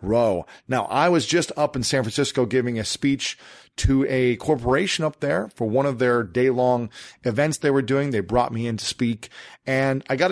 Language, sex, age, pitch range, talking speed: English, male, 40-59, 120-145 Hz, 205 wpm